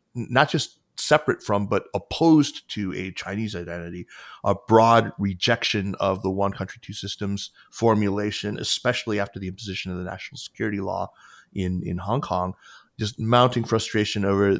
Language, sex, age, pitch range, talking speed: English, male, 30-49, 100-120 Hz, 150 wpm